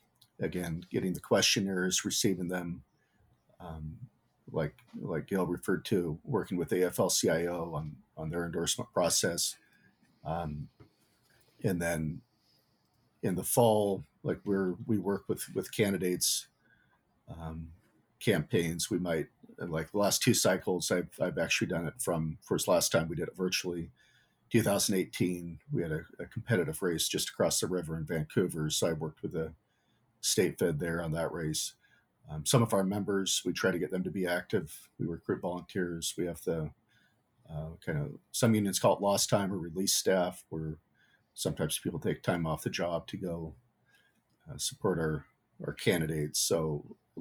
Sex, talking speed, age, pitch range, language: male, 160 wpm, 40-59, 80-100 Hz, English